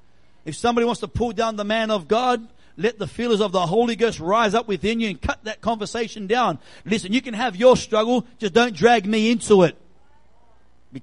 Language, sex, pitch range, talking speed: English, male, 185-240 Hz, 210 wpm